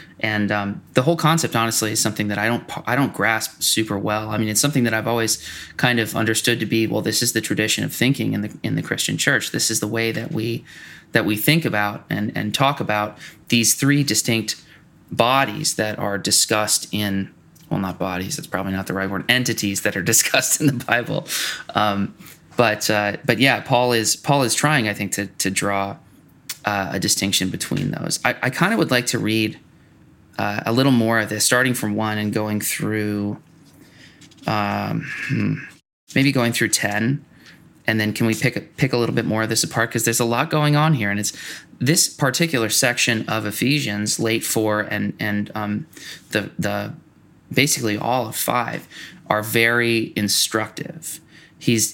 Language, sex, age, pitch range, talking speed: English, male, 20-39, 105-125 Hz, 195 wpm